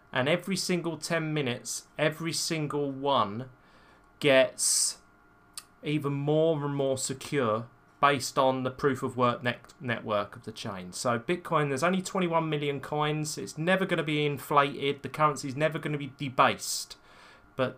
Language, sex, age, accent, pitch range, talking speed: English, male, 30-49, British, 115-150 Hz, 155 wpm